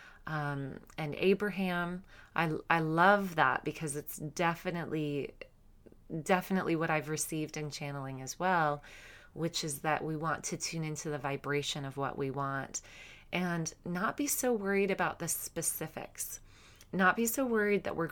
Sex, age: female, 30-49